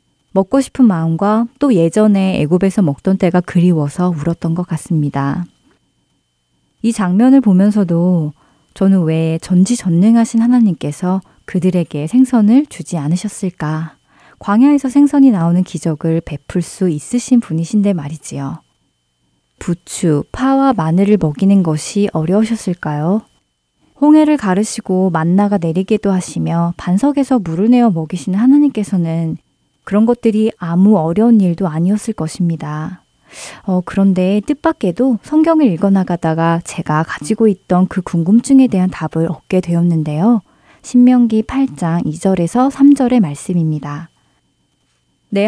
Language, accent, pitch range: Korean, native, 165-220 Hz